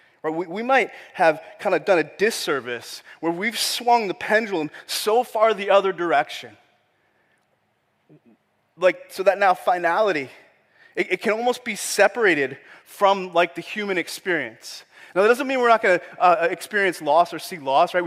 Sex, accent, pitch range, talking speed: male, American, 160-200 Hz, 170 wpm